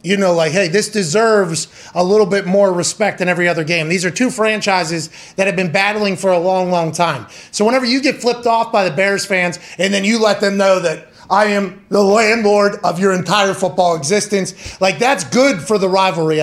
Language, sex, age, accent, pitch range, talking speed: English, male, 30-49, American, 185-220 Hz, 220 wpm